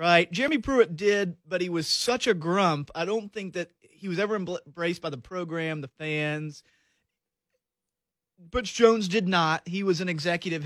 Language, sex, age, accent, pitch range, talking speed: English, male, 30-49, American, 170-215 Hz, 175 wpm